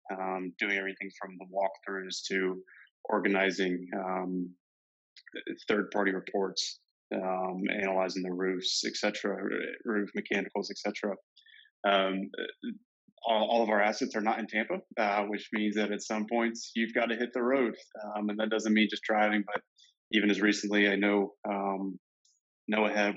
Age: 20-39